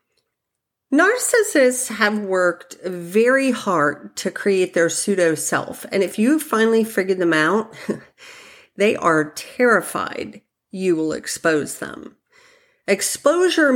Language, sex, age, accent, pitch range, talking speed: English, female, 50-69, American, 170-250 Hz, 105 wpm